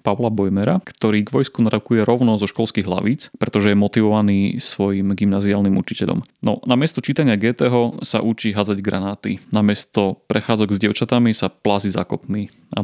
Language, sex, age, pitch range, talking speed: Slovak, male, 30-49, 100-120 Hz, 155 wpm